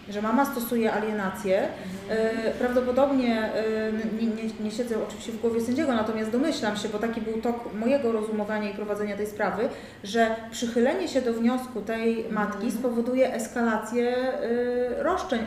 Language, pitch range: Polish, 210-245 Hz